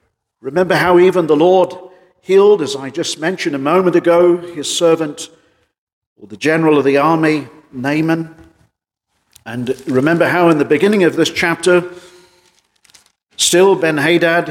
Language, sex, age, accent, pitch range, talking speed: English, male, 50-69, British, 140-185 Hz, 135 wpm